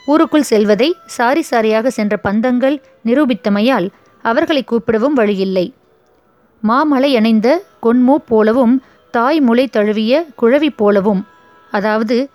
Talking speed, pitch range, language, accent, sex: 90 wpm, 220-280 Hz, Tamil, native, female